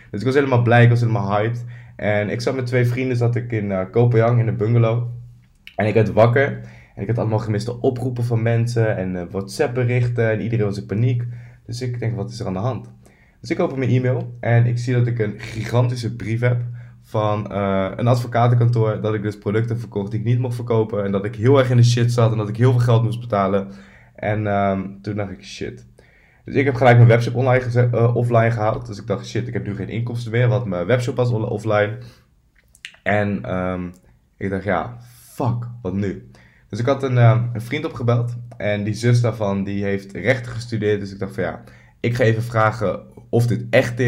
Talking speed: 225 wpm